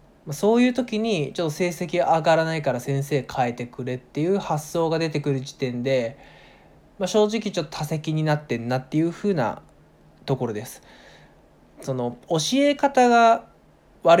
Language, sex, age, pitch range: Japanese, male, 20-39, 130-200 Hz